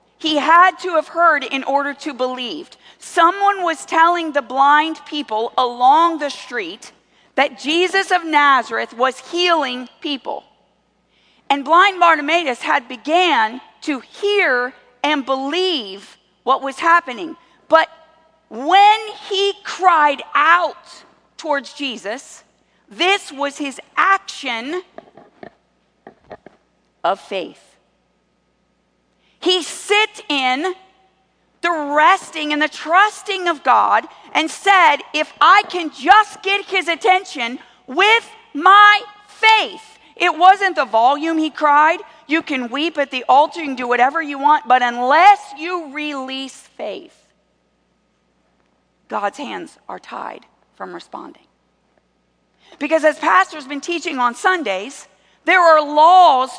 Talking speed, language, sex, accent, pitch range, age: 120 wpm, English, female, American, 270-360 Hz, 50-69